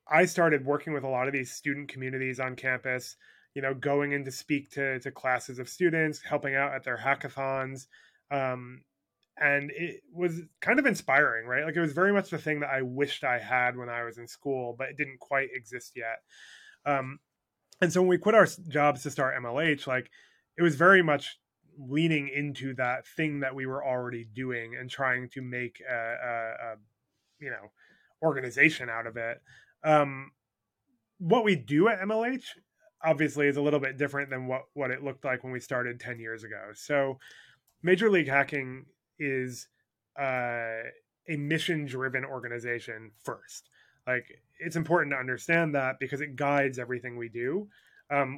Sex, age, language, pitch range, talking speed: male, 20-39, English, 125-150 Hz, 180 wpm